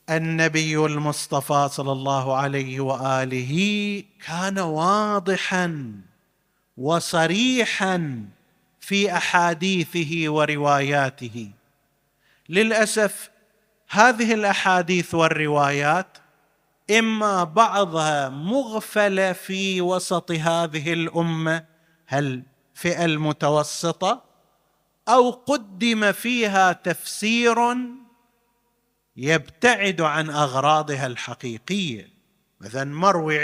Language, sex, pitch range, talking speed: Arabic, male, 140-200 Hz, 65 wpm